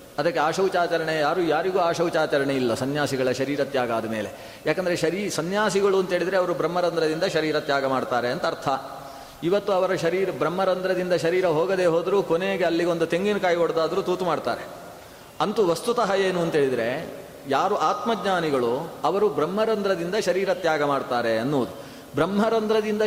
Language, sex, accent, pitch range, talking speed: Kannada, male, native, 155-195 Hz, 120 wpm